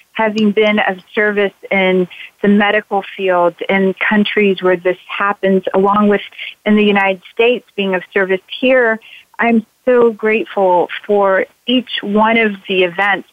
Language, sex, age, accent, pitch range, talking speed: English, female, 30-49, American, 190-220 Hz, 145 wpm